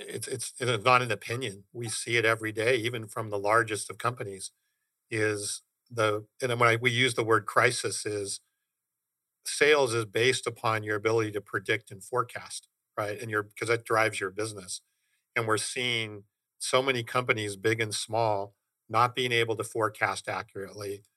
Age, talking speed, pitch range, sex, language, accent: 50-69, 175 wpm, 105-120 Hz, male, English, American